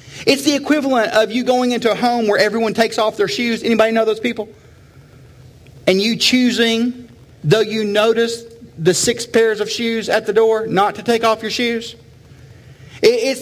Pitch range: 160-245 Hz